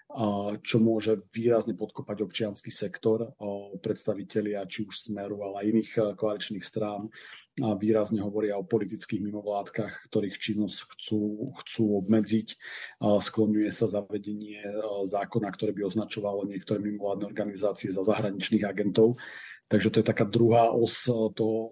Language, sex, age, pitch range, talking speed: Czech, male, 40-59, 105-115 Hz, 120 wpm